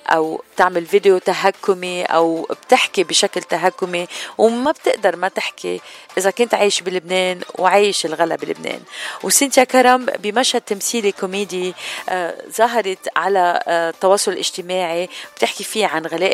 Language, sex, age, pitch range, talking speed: Arabic, female, 40-59, 175-215 Hz, 125 wpm